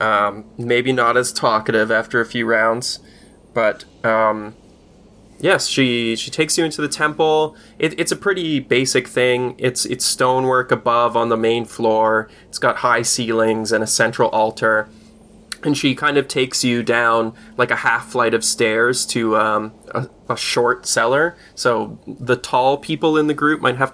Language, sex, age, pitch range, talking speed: English, male, 20-39, 115-150 Hz, 175 wpm